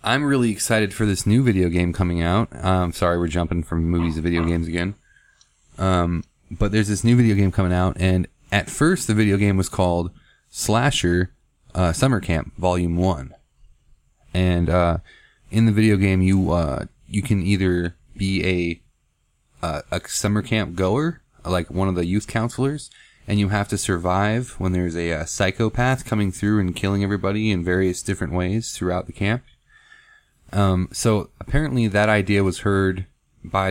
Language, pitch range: English, 90-110 Hz